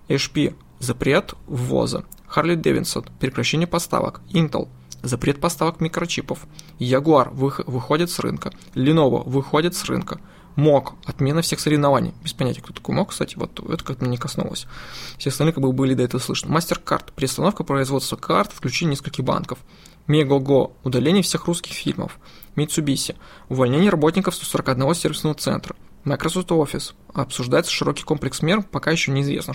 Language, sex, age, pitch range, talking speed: Russian, male, 20-39, 135-170 Hz, 145 wpm